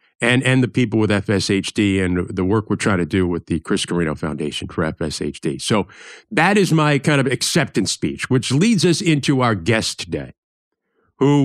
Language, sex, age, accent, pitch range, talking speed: English, male, 50-69, American, 105-155 Hz, 190 wpm